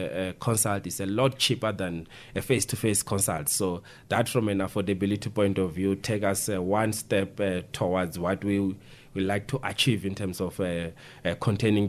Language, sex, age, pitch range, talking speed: English, male, 30-49, 95-120 Hz, 185 wpm